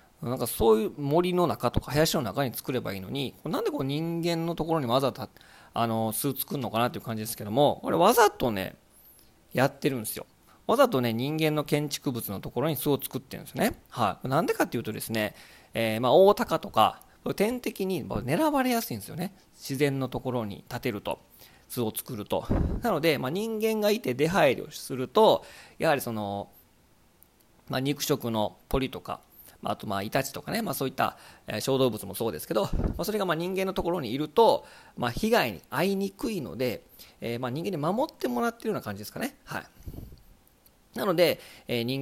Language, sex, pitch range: Japanese, male, 115-175 Hz